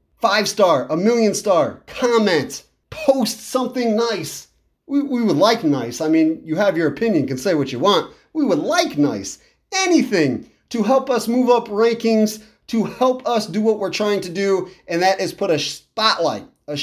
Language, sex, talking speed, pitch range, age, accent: English, male, 185 wpm, 165-230 Hz, 30-49, American